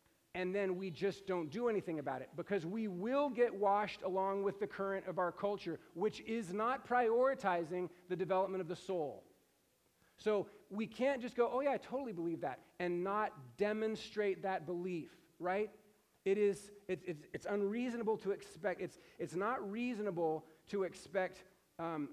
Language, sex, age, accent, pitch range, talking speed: English, male, 40-59, American, 165-200 Hz, 165 wpm